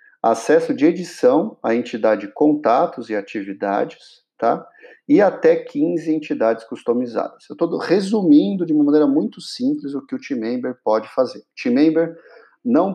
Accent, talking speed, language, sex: Brazilian, 150 wpm, Portuguese, male